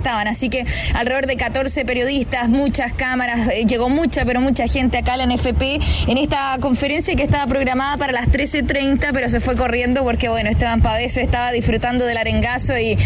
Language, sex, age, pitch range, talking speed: Spanish, female, 20-39, 240-270 Hz, 190 wpm